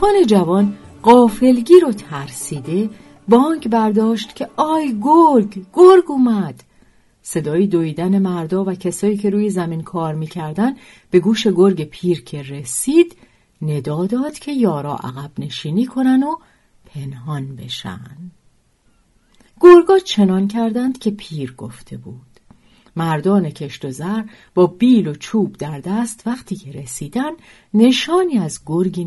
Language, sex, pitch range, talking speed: Persian, female, 165-255 Hz, 125 wpm